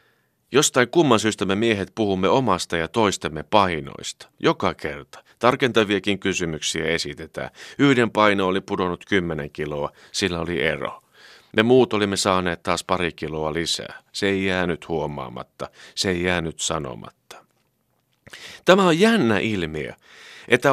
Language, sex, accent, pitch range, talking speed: Finnish, male, native, 85-120 Hz, 130 wpm